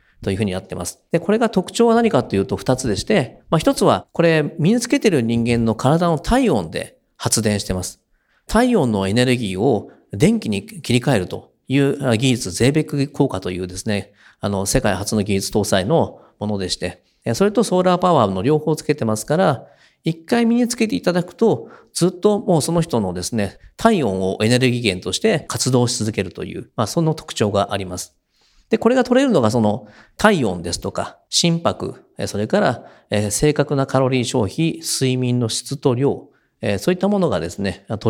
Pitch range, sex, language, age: 105-175 Hz, male, Japanese, 40-59